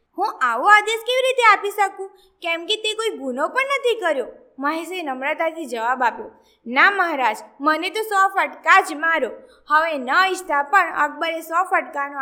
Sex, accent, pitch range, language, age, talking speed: female, native, 305-425 Hz, Gujarati, 20-39, 165 wpm